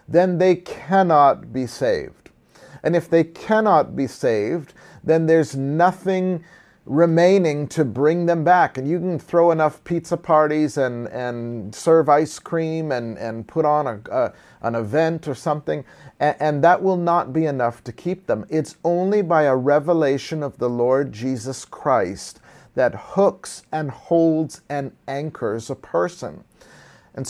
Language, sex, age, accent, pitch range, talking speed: English, male, 40-59, American, 130-165 Hz, 155 wpm